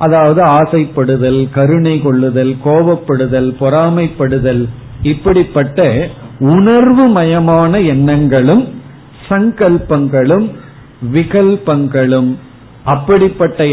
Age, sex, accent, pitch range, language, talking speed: 50-69, male, native, 135-175 Hz, Tamil, 55 wpm